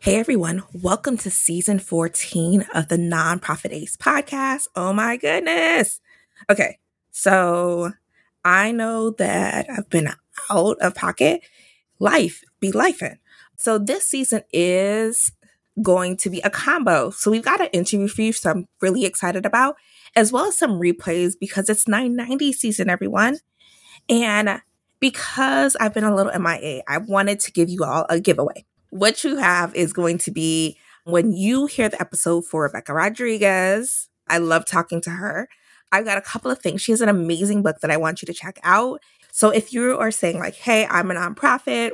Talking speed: 175 wpm